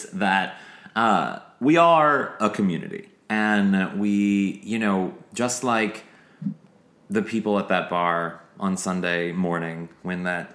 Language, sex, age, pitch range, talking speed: English, male, 30-49, 90-110 Hz, 125 wpm